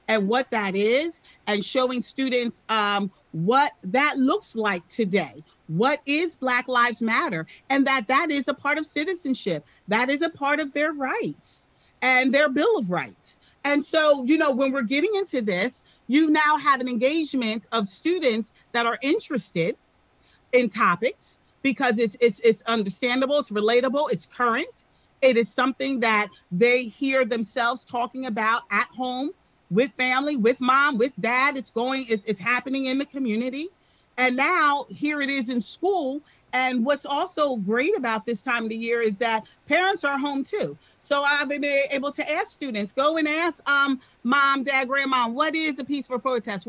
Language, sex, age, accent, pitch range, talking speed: English, female, 40-59, American, 230-285 Hz, 175 wpm